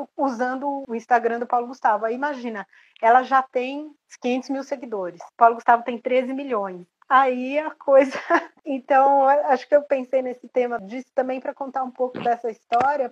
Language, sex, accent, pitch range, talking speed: Portuguese, female, Brazilian, 230-295 Hz, 170 wpm